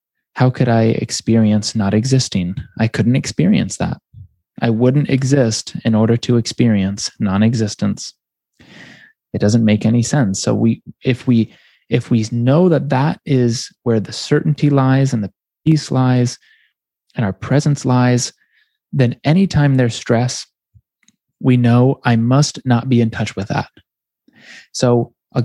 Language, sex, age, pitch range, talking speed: English, male, 20-39, 105-130 Hz, 145 wpm